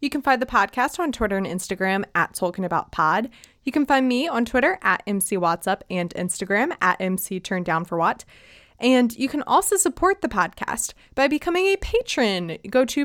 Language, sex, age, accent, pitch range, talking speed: English, female, 20-39, American, 185-255 Hz, 165 wpm